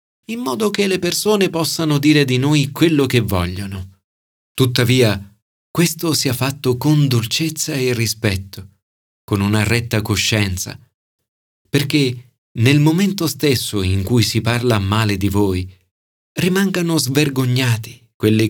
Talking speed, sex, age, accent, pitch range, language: 125 wpm, male, 40-59, native, 100-150 Hz, Italian